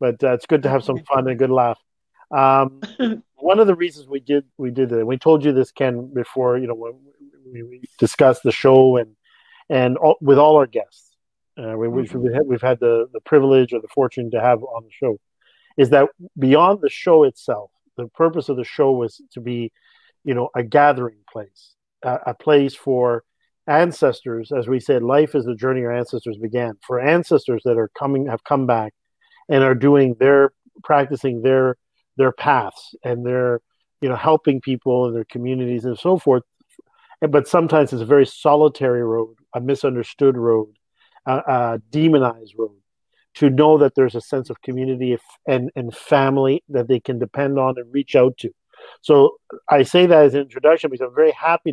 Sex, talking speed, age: male, 195 wpm, 40-59